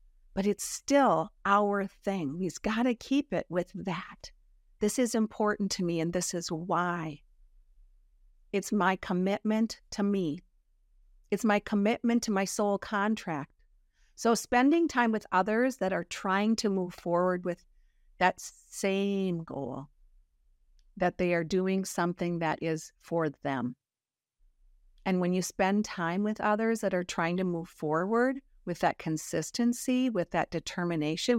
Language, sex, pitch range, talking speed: English, female, 170-215 Hz, 145 wpm